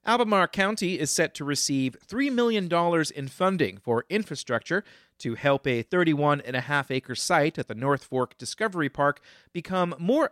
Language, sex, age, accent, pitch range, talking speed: English, male, 40-59, American, 130-175 Hz, 170 wpm